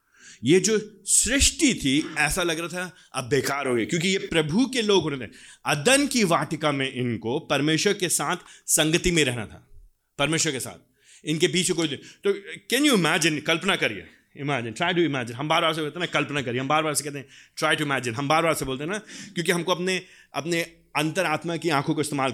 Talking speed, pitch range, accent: 215 wpm, 135-180 Hz, native